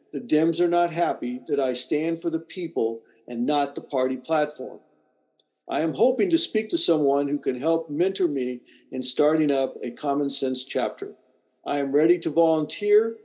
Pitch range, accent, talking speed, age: 140-180 Hz, American, 180 wpm, 50-69